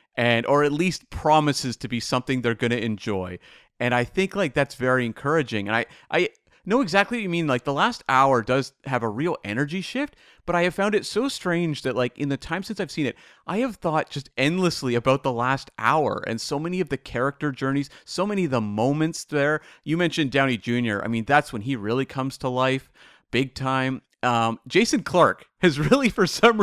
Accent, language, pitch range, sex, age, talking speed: American, English, 130-180 Hz, male, 40-59, 215 wpm